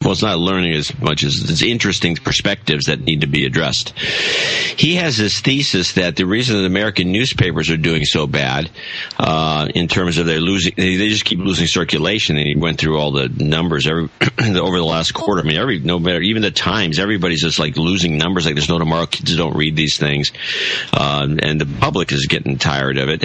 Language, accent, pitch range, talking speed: English, American, 80-95 Hz, 215 wpm